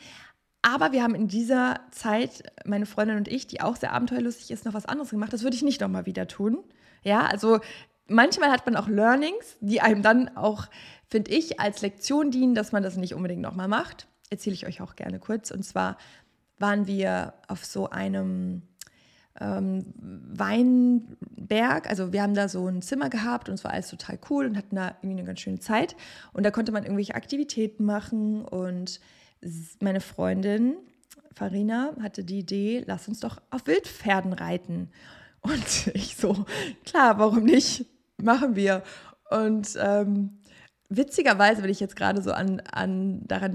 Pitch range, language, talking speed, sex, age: 190-230 Hz, German, 170 wpm, female, 20-39